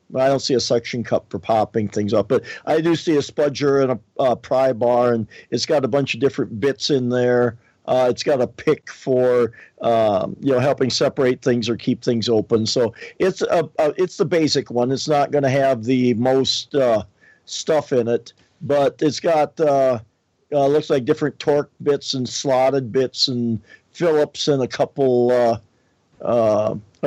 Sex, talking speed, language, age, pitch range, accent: male, 190 wpm, English, 50-69, 120-145 Hz, American